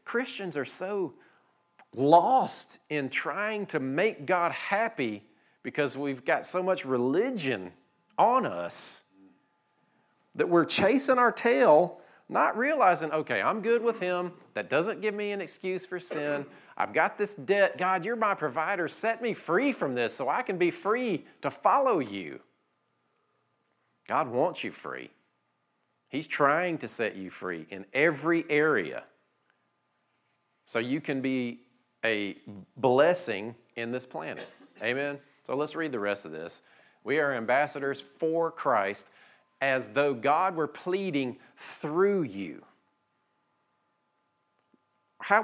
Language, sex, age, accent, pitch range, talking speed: English, male, 40-59, American, 125-180 Hz, 135 wpm